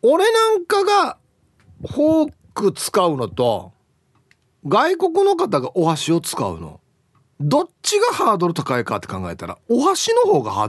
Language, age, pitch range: Japanese, 40-59, 130-175 Hz